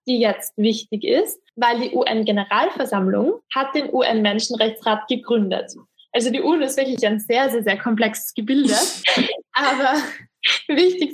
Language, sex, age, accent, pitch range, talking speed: German, female, 20-39, German, 225-290 Hz, 130 wpm